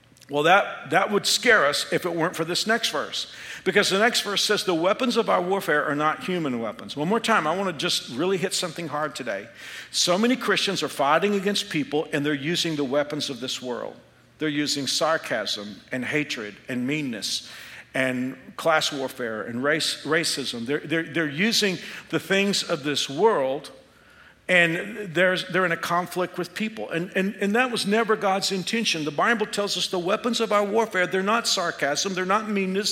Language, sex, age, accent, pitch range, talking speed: English, male, 50-69, American, 150-200 Hz, 195 wpm